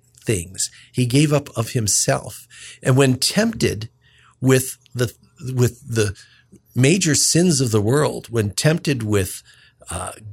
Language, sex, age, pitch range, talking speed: English, male, 50-69, 115-150 Hz, 130 wpm